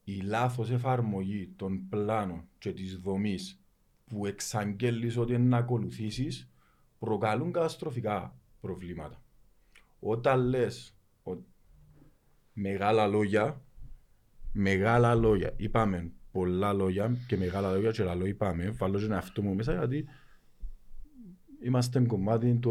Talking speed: 110 wpm